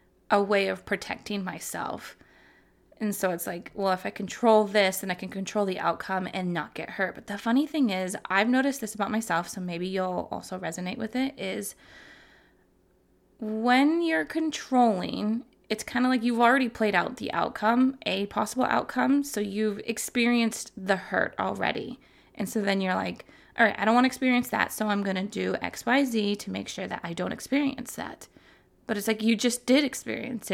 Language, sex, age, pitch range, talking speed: English, female, 20-39, 195-245 Hz, 195 wpm